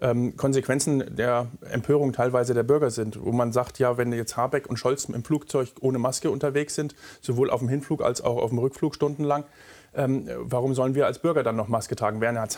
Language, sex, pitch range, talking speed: German, male, 125-145 Hz, 205 wpm